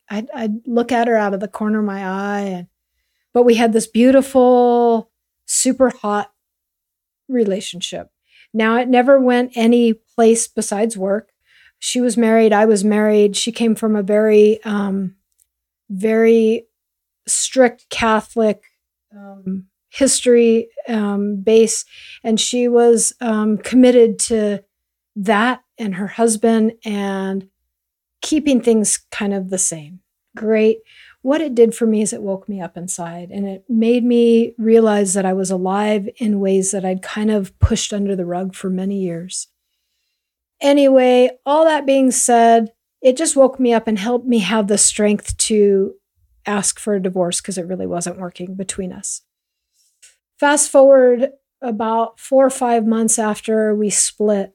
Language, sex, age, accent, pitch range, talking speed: English, female, 50-69, American, 195-235 Hz, 150 wpm